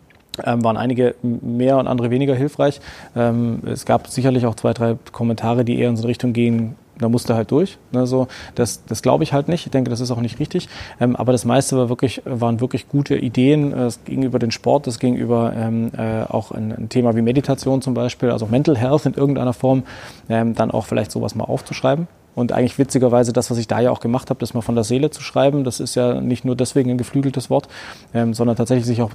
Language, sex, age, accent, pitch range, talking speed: German, male, 20-39, German, 115-130 Hz, 220 wpm